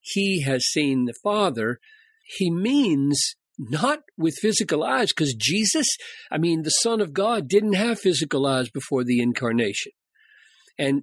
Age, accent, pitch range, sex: 50-69, American, 135-220 Hz, male